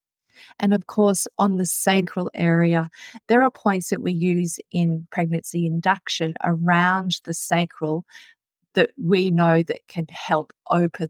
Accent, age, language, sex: Australian, 30-49, English, female